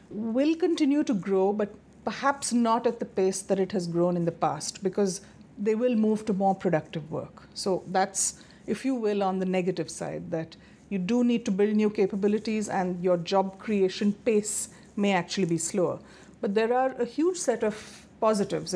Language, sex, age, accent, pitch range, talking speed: English, female, 50-69, Indian, 185-225 Hz, 190 wpm